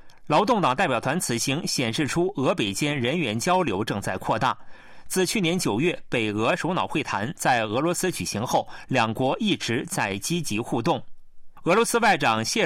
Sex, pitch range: male, 130-185 Hz